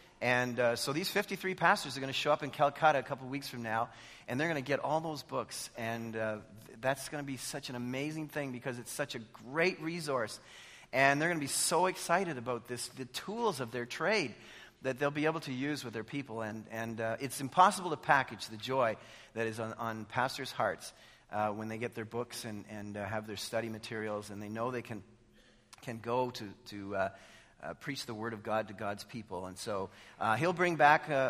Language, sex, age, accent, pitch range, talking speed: English, male, 40-59, American, 115-145 Hz, 230 wpm